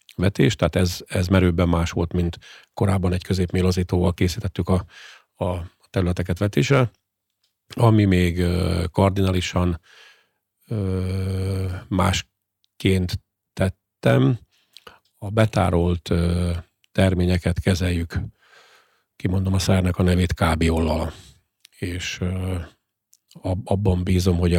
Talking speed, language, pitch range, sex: 85 wpm, Hungarian, 90-100 Hz, male